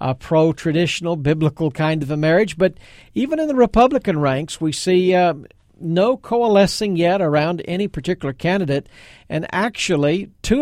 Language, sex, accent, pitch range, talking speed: English, male, American, 160-220 Hz, 145 wpm